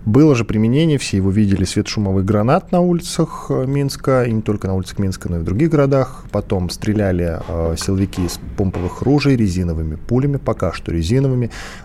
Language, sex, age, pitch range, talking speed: Russian, male, 20-39, 95-130 Hz, 170 wpm